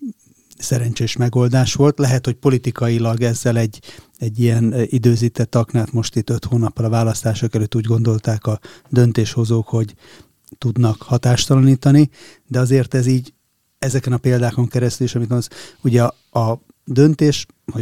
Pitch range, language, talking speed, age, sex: 115-135 Hz, Hungarian, 140 wpm, 30-49, male